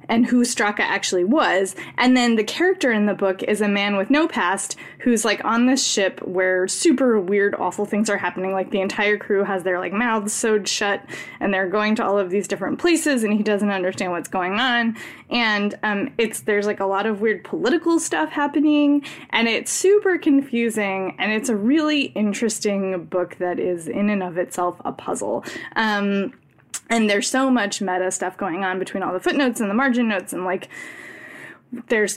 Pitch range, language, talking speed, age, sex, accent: 205-270 Hz, English, 200 wpm, 10-29, female, American